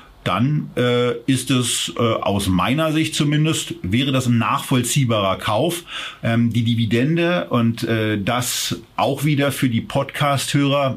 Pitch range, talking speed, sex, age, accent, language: 115-130 Hz, 135 wpm, male, 50-69, German, German